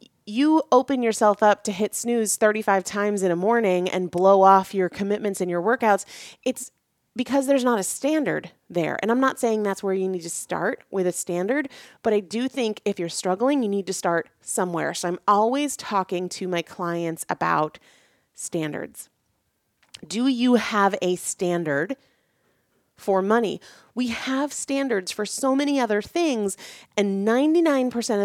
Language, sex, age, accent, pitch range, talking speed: English, female, 30-49, American, 175-235 Hz, 165 wpm